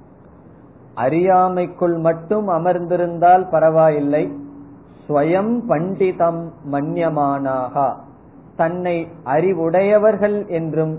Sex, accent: male, native